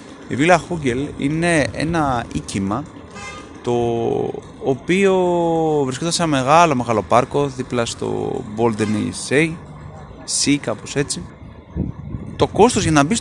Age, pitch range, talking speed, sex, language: 20-39, 110-160 Hz, 115 wpm, male, Greek